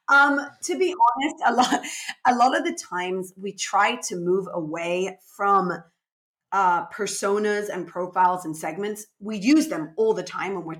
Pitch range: 180-235 Hz